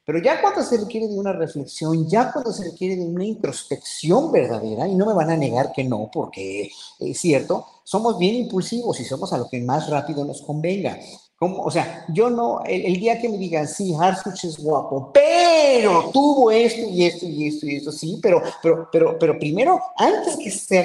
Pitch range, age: 165-225 Hz, 50-69